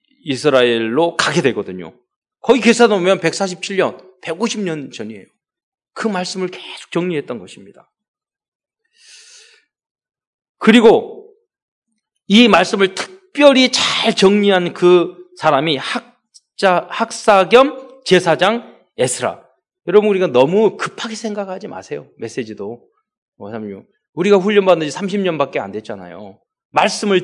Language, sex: Korean, male